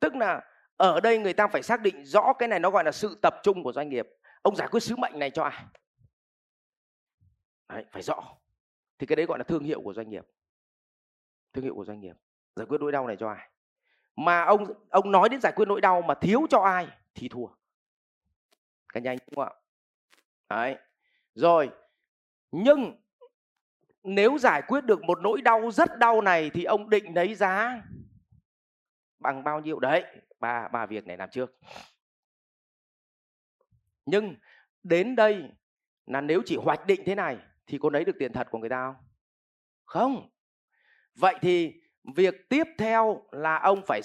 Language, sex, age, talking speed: Vietnamese, male, 30-49, 180 wpm